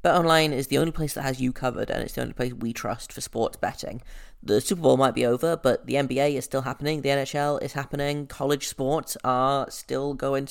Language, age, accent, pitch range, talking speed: English, 30-49, British, 125-150 Hz, 230 wpm